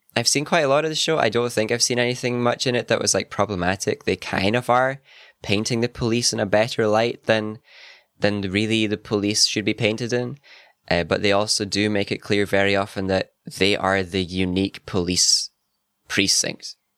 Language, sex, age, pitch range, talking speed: English, male, 10-29, 90-110 Hz, 205 wpm